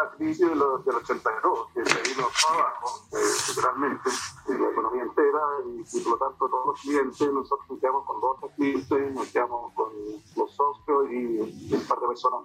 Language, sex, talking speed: Spanish, male, 190 wpm